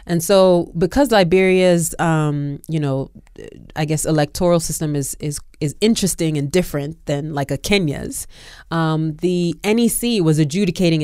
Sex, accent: female, American